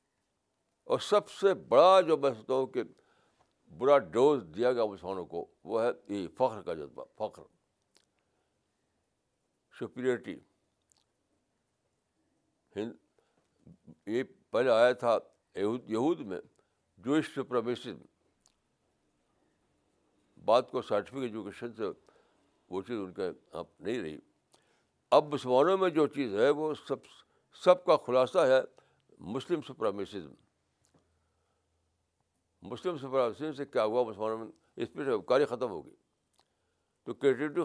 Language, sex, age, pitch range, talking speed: Urdu, male, 60-79, 105-165 Hz, 105 wpm